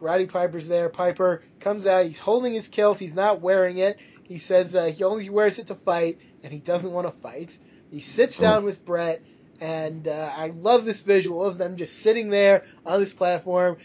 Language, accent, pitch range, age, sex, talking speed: English, American, 175-205 Hz, 20-39, male, 210 wpm